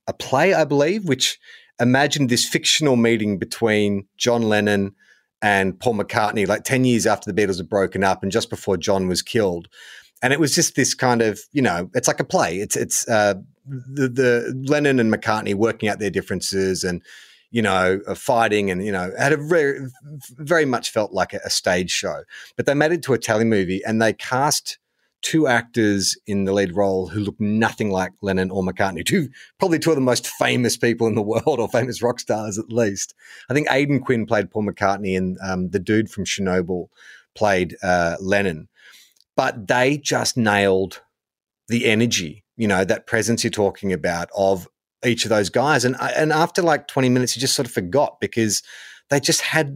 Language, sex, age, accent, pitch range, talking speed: English, male, 30-49, Australian, 100-130 Hz, 195 wpm